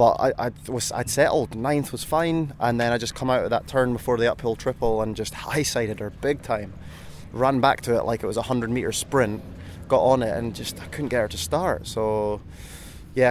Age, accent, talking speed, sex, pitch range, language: 20-39, British, 225 wpm, male, 105-130 Hz, English